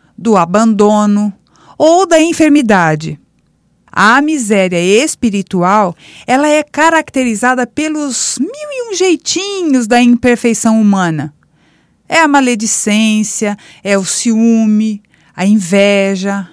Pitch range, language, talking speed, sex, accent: 210-290 Hz, Portuguese, 100 wpm, female, Brazilian